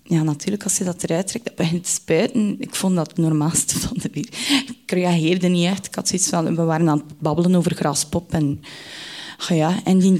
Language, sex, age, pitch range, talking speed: Dutch, female, 20-39, 170-220 Hz, 225 wpm